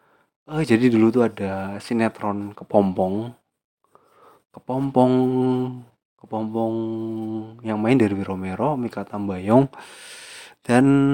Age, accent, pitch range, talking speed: 20-39, native, 100-120 Hz, 85 wpm